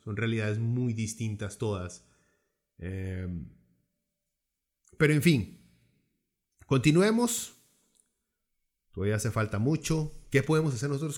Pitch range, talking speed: 110-145 Hz, 95 wpm